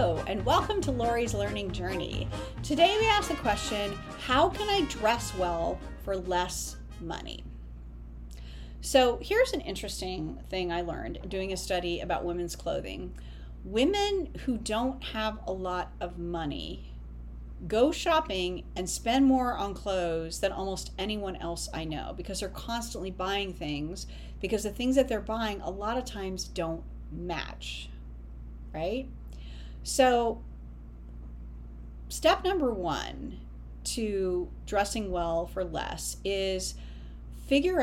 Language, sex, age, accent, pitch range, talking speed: English, female, 40-59, American, 165-240 Hz, 130 wpm